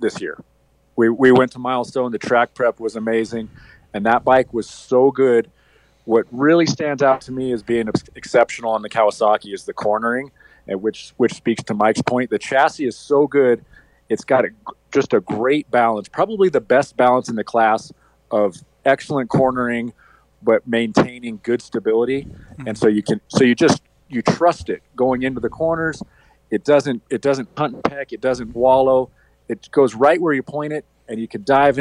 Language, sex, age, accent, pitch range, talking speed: English, male, 40-59, American, 115-140 Hz, 190 wpm